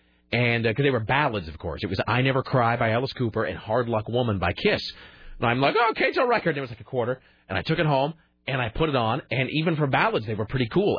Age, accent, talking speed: 40-59, American, 285 wpm